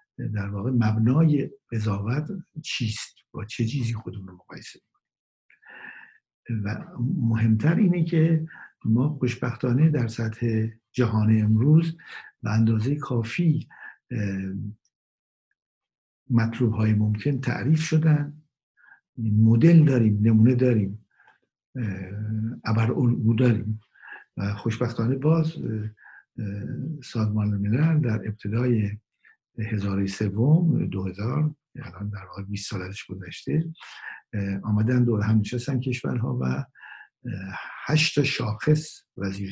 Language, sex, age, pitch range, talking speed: Persian, male, 60-79, 105-135 Hz, 95 wpm